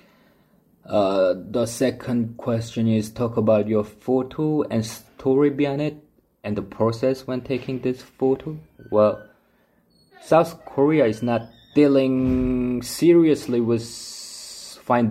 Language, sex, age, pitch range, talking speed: English, male, 20-39, 95-125 Hz, 115 wpm